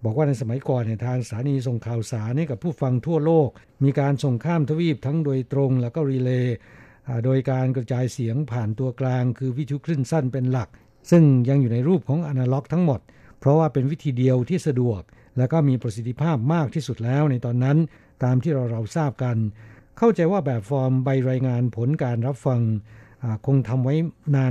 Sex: male